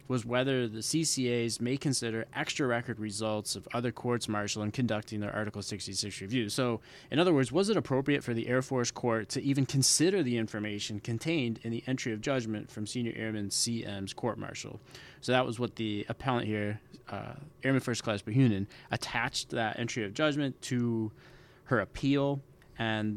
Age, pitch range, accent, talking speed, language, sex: 20-39, 110-130 Hz, American, 180 wpm, English, male